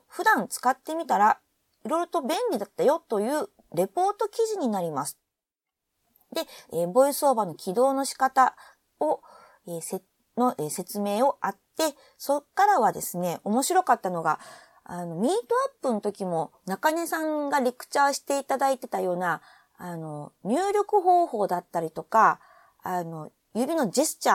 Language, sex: Japanese, female